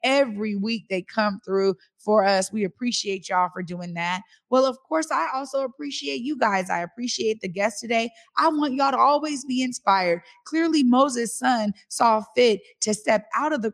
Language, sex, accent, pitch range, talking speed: English, female, American, 200-265 Hz, 190 wpm